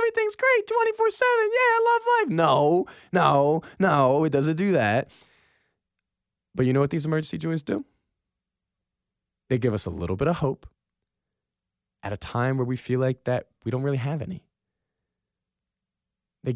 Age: 20-39